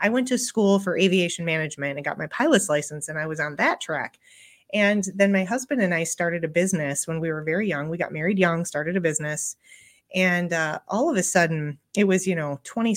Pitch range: 165-205 Hz